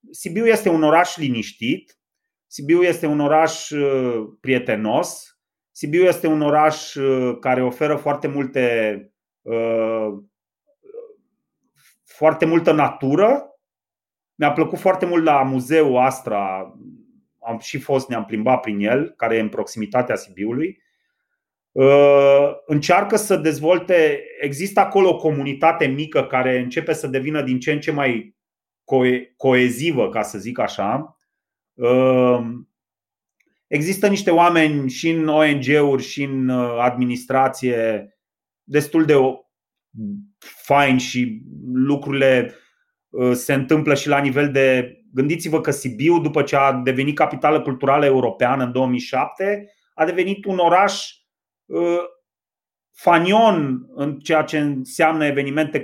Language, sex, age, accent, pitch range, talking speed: Romanian, male, 30-49, native, 130-165 Hz, 110 wpm